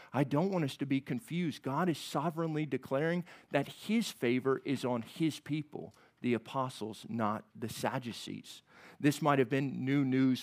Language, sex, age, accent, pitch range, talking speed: English, male, 40-59, American, 120-145 Hz, 165 wpm